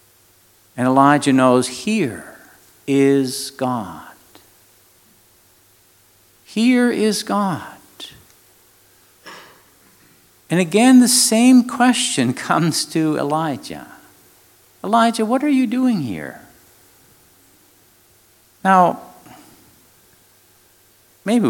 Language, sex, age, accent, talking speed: English, male, 50-69, American, 70 wpm